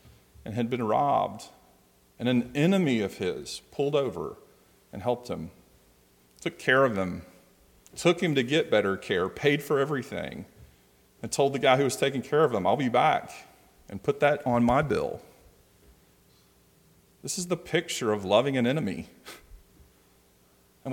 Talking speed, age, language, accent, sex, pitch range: 160 wpm, 40-59, English, American, male, 105-160 Hz